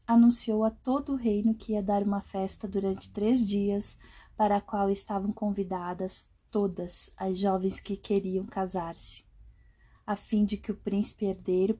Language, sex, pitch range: Portuguese, female, 190-220 Hz